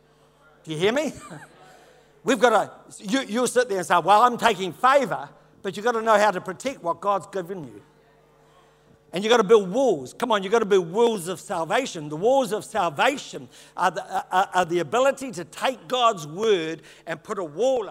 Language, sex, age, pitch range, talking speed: English, male, 60-79, 155-230 Hz, 205 wpm